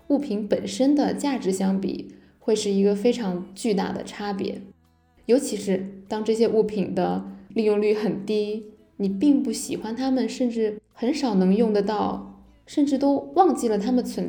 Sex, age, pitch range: female, 10-29, 195-235 Hz